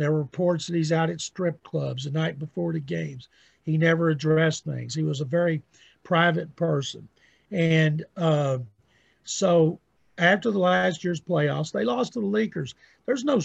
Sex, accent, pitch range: male, American, 155-180 Hz